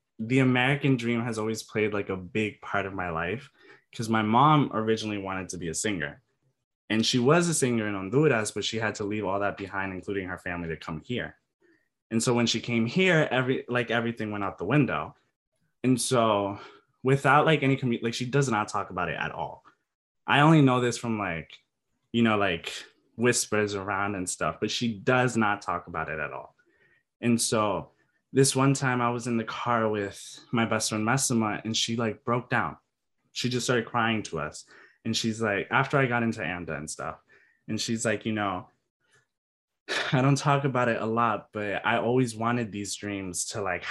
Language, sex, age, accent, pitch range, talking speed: English, male, 20-39, American, 100-120 Hz, 200 wpm